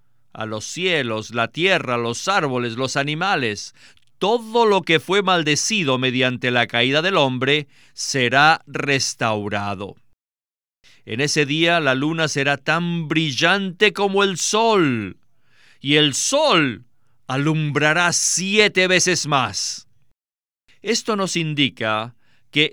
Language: Spanish